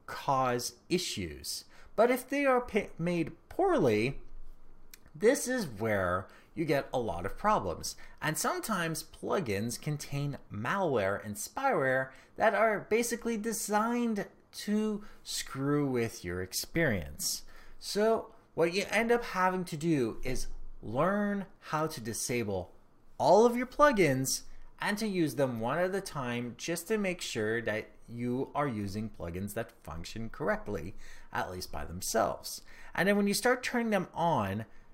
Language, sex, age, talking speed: English, male, 30-49, 140 wpm